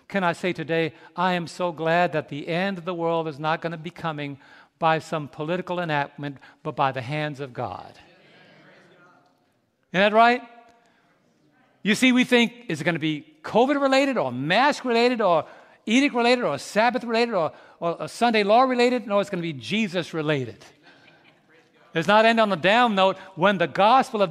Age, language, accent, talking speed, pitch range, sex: 60-79, English, American, 175 wpm, 155-215 Hz, male